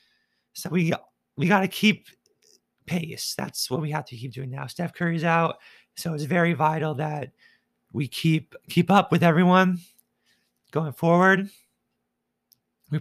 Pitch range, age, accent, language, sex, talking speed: 145-190 Hz, 30-49, American, English, male, 150 wpm